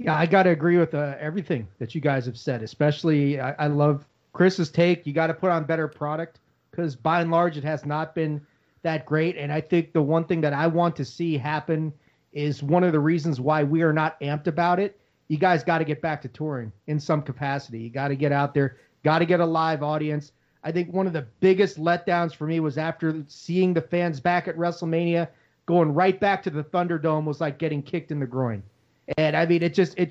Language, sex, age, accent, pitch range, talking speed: English, male, 40-59, American, 150-175 Hz, 235 wpm